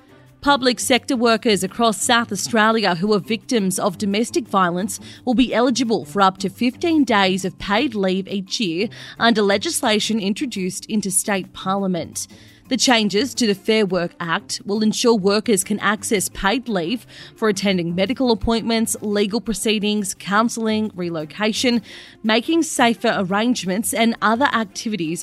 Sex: female